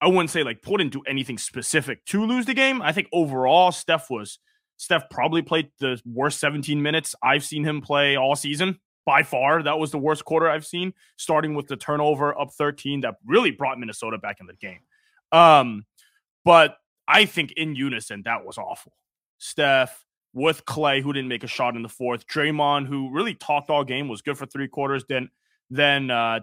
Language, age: English, 20-39